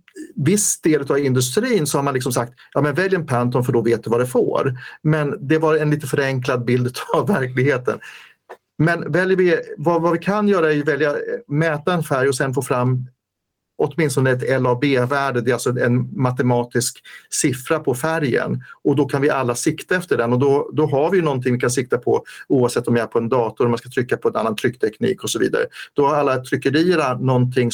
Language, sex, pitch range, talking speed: English, male, 120-150 Hz, 205 wpm